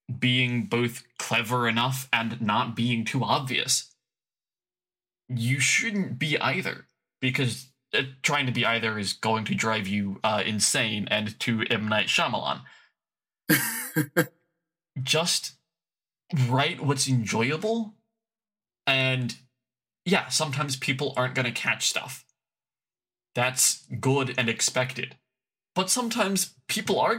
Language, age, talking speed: English, 20-39, 115 wpm